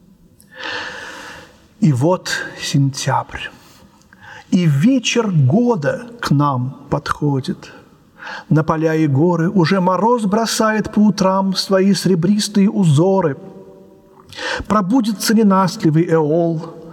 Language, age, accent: Russian, 50-69, native